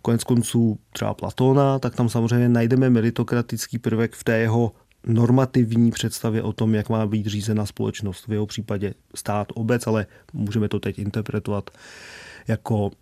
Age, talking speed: 30-49, 150 wpm